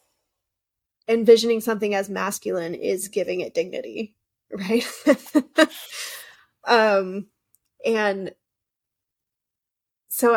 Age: 20-39